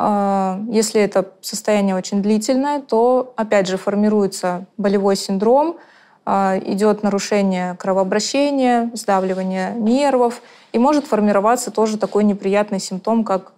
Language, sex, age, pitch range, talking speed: Russian, female, 20-39, 195-235 Hz, 105 wpm